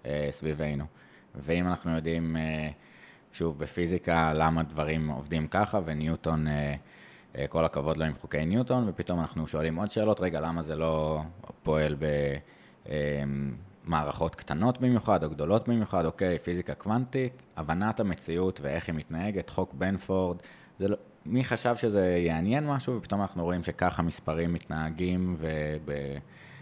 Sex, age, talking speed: male, 20-39, 125 wpm